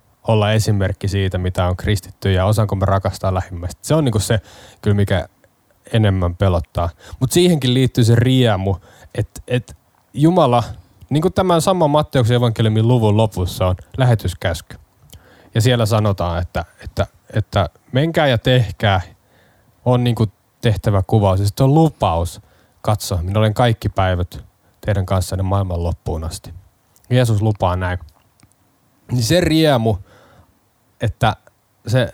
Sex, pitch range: male, 95-125 Hz